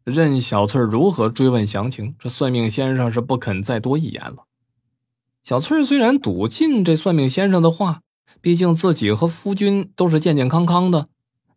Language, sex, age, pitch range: Chinese, male, 20-39, 120-165 Hz